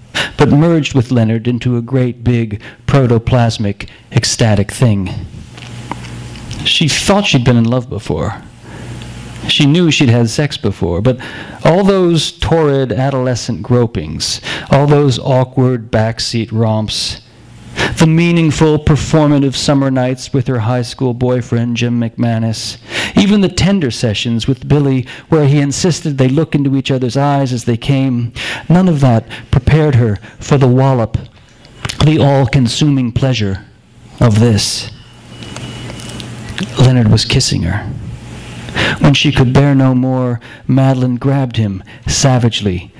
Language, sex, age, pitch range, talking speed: English, male, 40-59, 110-135 Hz, 130 wpm